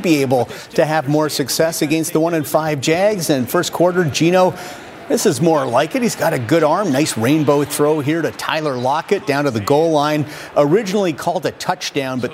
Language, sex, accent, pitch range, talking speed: English, male, American, 135-165 Hz, 210 wpm